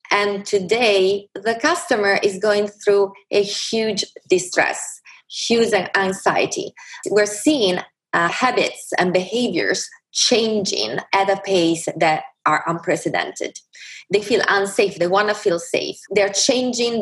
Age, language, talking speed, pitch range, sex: 20-39, English, 125 wpm, 165-210 Hz, female